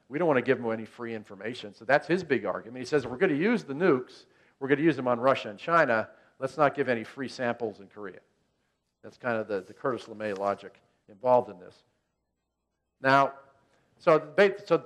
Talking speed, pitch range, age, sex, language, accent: 215 wpm, 115-145 Hz, 50-69, male, English, American